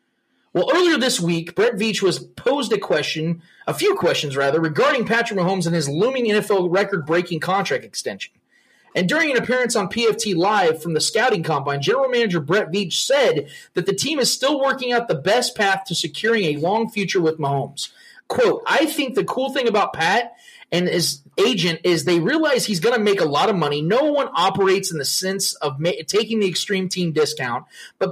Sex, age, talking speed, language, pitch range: male, 30-49, 200 wpm, English, 170-235 Hz